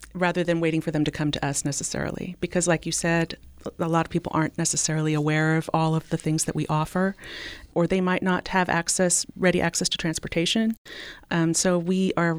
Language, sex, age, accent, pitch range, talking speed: English, female, 30-49, American, 155-175 Hz, 210 wpm